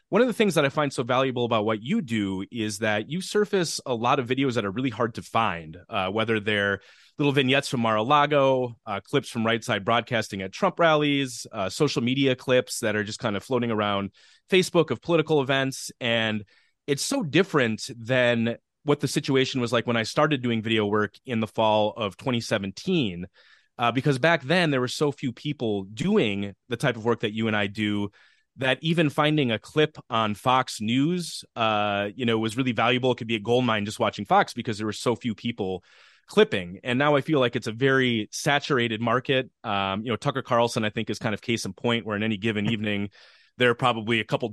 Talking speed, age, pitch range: 215 wpm, 30-49, 110-135 Hz